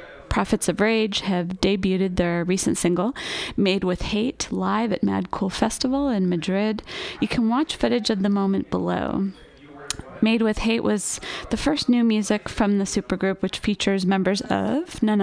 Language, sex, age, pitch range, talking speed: English, female, 20-39, 185-230 Hz, 165 wpm